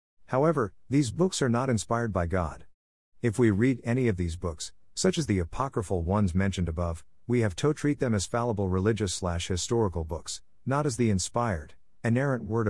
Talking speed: 175 wpm